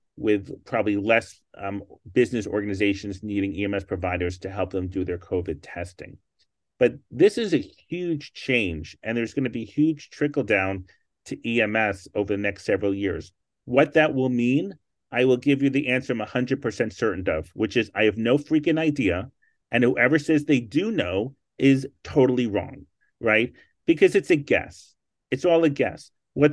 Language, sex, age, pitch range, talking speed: English, male, 30-49, 105-145 Hz, 170 wpm